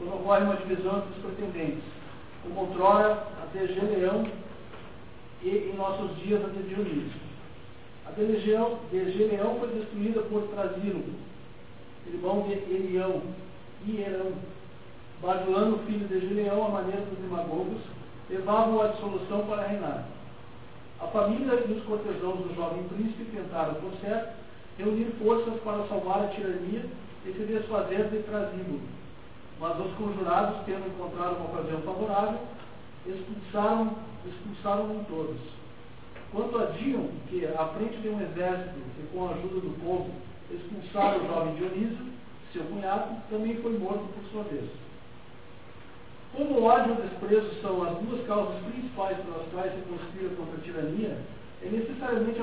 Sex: male